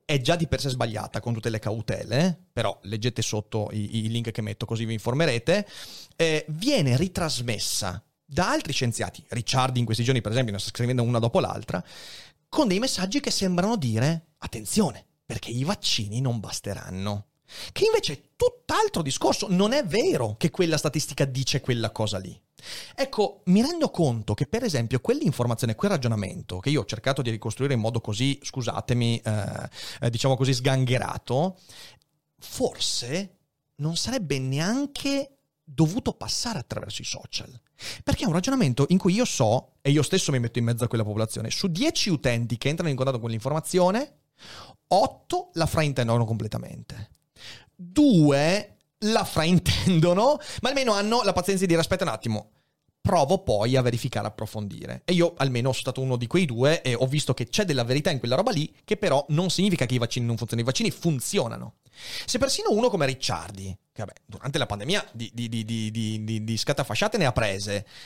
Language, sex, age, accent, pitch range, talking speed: Italian, male, 30-49, native, 115-175 Hz, 175 wpm